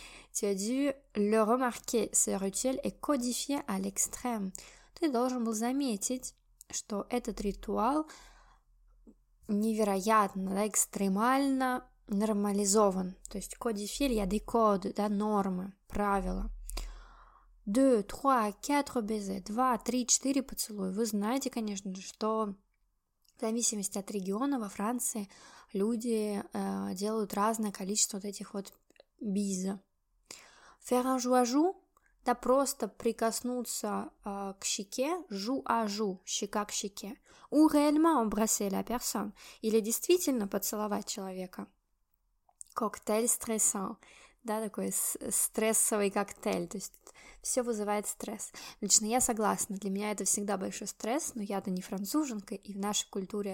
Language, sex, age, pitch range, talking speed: Russian, female, 20-39, 200-245 Hz, 95 wpm